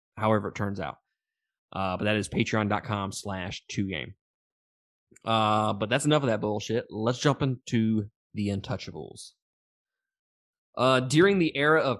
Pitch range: 105-125 Hz